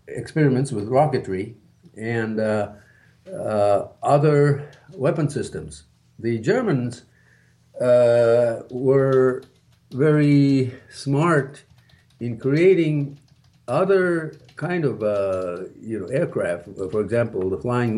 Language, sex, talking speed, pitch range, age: English, male, 95 wpm, 110-145 Hz, 50-69